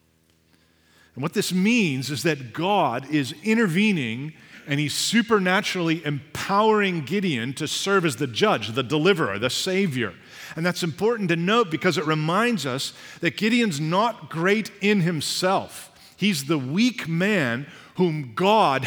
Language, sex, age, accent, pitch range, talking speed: English, male, 50-69, American, 135-185 Hz, 140 wpm